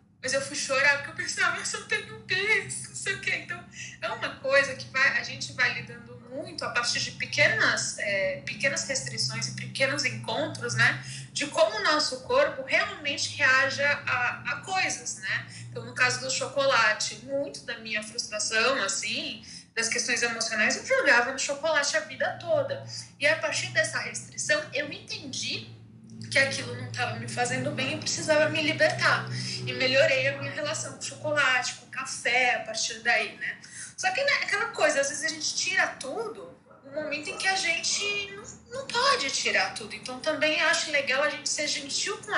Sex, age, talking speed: female, 20-39, 190 wpm